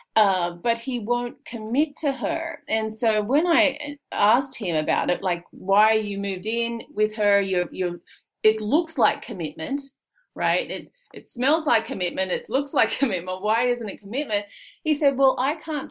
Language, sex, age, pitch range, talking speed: English, female, 40-59, 195-270 Hz, 175 wpm